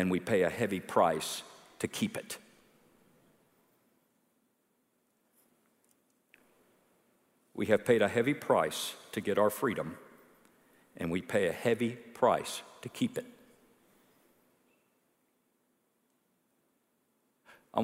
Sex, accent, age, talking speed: male, American, 50-69, 100 wpm